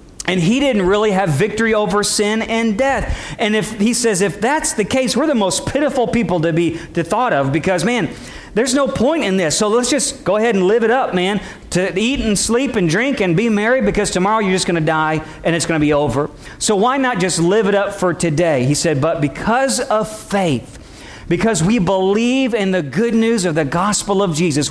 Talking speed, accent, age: 230 wpm, American, 40-59